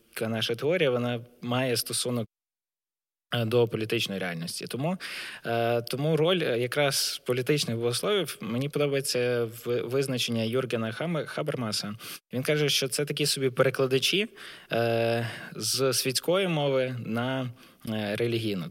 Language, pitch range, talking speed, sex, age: Ukrainian, 115-135 Hz, 100 wpm, male, 20-39